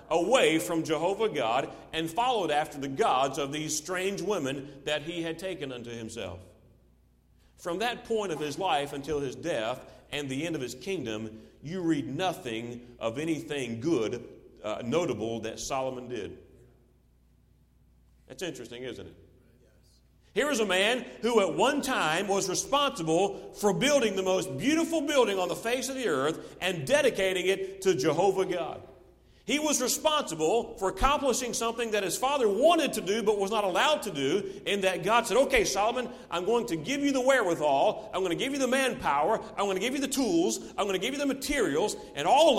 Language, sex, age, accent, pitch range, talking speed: English, male, 40-59, American, 155-255 Hz, 185 wpm